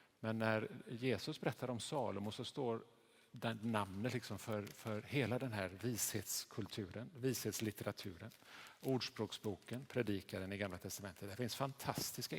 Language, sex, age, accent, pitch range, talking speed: Swedish, male, 50-69, Norwegian, 100-125 Hz, 125 wpm